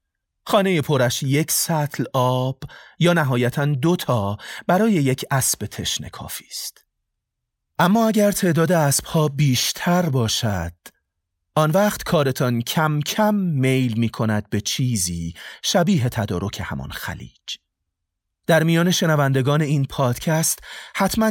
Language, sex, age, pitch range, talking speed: Persian, male, 30-49, 95-150 Hz, 115 wpm